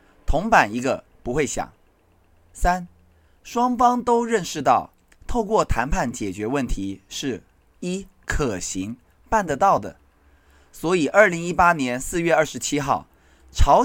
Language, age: Chinese, 20-39